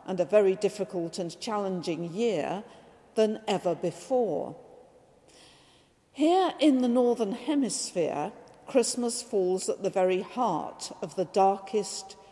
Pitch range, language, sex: 190-235 Hz, English, female